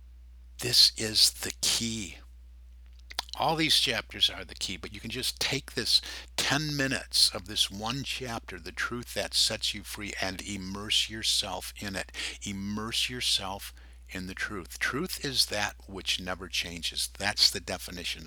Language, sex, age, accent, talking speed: English, male, 50-69, American, 155 wpm